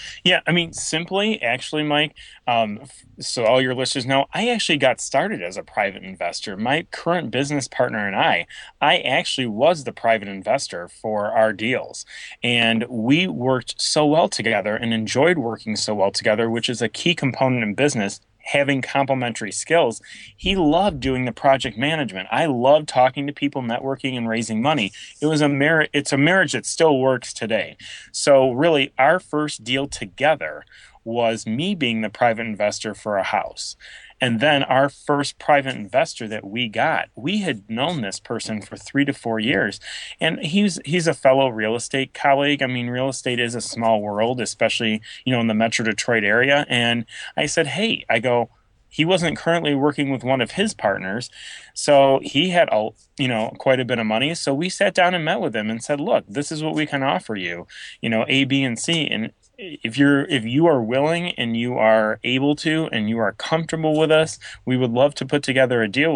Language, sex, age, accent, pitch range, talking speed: English, male, 30-49, American, 115-145 Hz, 195 wpm